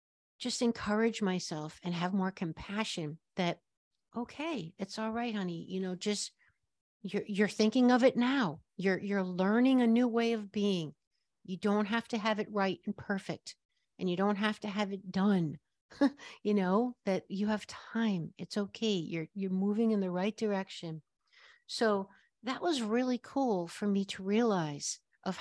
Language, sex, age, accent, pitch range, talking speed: English, female, 60-79, American, 185-220 Hz, 170 wpm